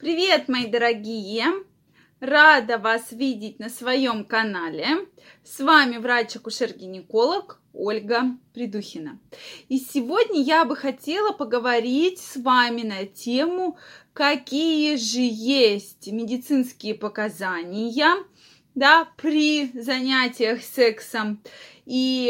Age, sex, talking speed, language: 20-39, female, 95 wpm, Russian